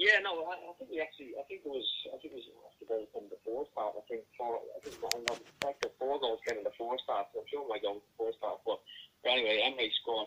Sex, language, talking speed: male, English, 340 wpm